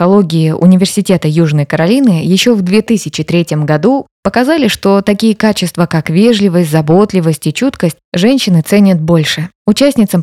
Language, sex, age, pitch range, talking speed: Russian, female, 20-39, 165-215 Hz, 125 wpm